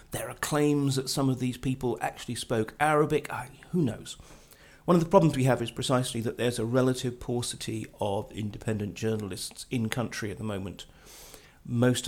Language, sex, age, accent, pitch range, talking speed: English, male, 40-59, British, 110-145 Hz, 180 wpm